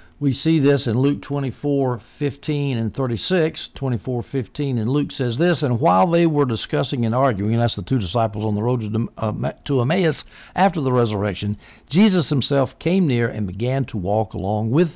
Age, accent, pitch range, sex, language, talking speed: 60-79, American, 110-140 Hz, male, English, 170 wpm